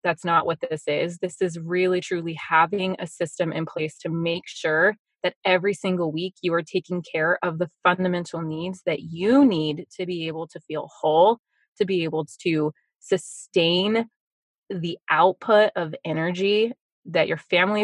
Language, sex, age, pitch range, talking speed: English, female, 20-39, 165-195 Hz, 170 wpm